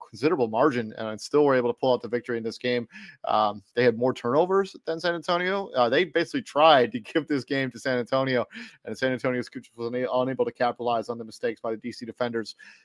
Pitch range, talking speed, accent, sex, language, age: 120-150 Hz, 225 wpm, American, male, English, 30-49